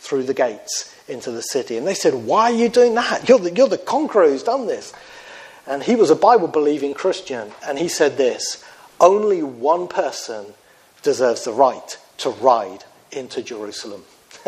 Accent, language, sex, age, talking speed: British, English, male, 40-59, 180 wpm